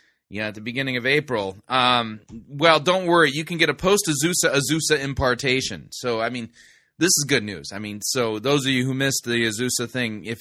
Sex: male